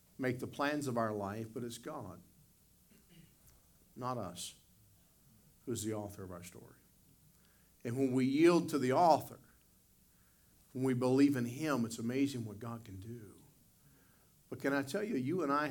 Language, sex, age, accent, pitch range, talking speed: English, male, 50-69, American, 110-130 Hz, 165 wpm